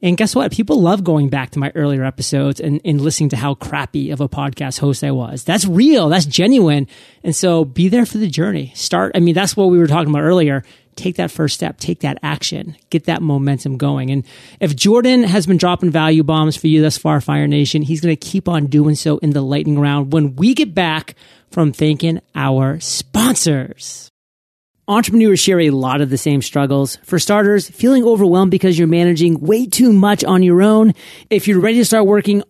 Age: 30-49